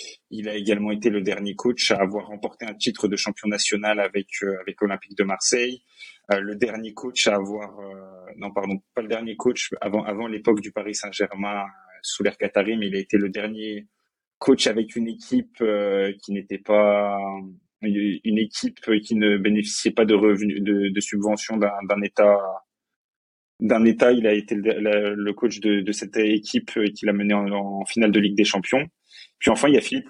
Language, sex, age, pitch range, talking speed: French, male, 20-39, 100-110 Hz, 200 wpm